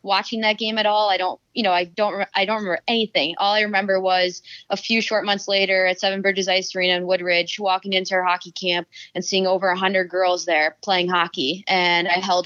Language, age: English, 20-39